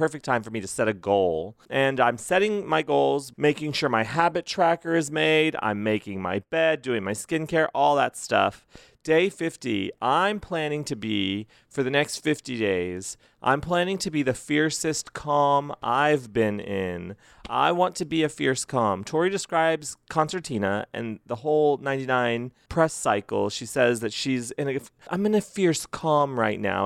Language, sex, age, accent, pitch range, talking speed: English, male, 30-49, American, 120-165 Hz, 180 wpm